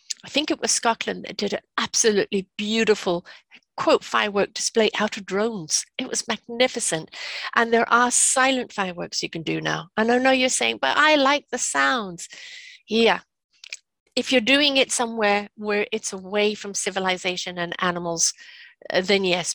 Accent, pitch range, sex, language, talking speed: British, 185-235 Hz, female, English, 165 wpm